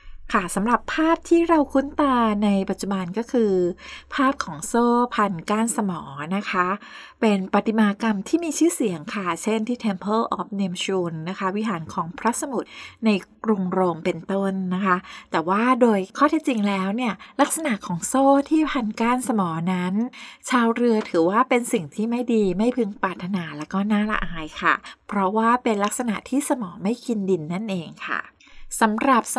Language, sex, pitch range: Thai, female, 195-245 Hz